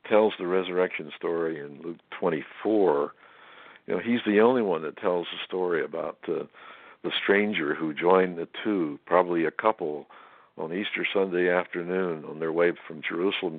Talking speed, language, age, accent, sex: 165 wpm, English, 60-79, American, male